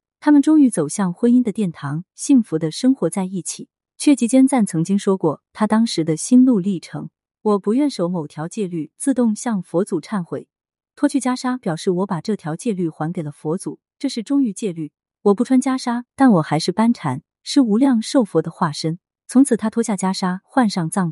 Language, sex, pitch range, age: Chinese, female, 160-240 Hz, 30-49